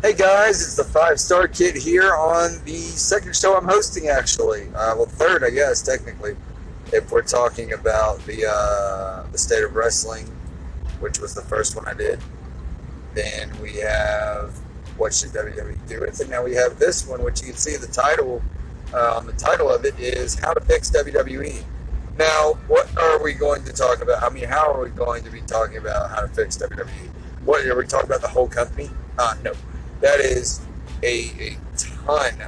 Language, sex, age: English, male, 30-49